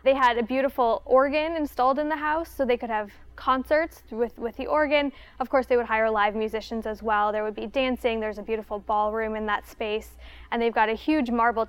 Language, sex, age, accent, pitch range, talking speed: English, female, 10-29, American, 215-255 Hz, 225 wpm